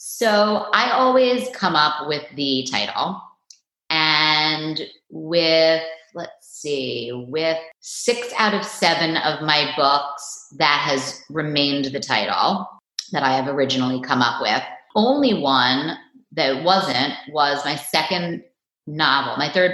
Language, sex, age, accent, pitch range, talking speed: English, female, 30-49, American, 140-170 Hz, 130 wpm